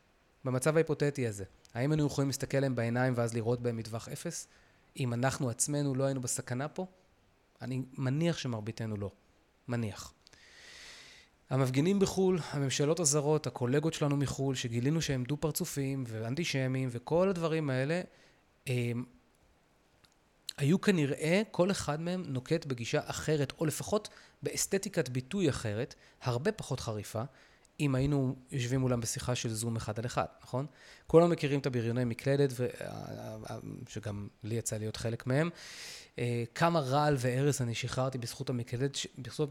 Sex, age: male, 20-39